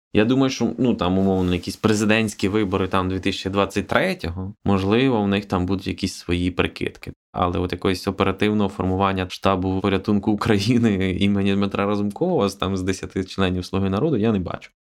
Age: 20-39